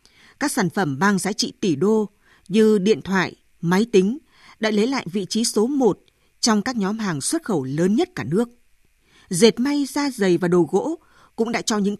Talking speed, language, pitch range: 205 wpm, Vietnamese, 185-245 Hz